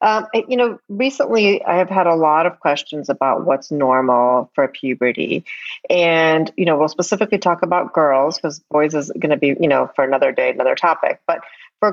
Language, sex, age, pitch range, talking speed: English, female, 40-59, 140-180 Hz, 195 wpm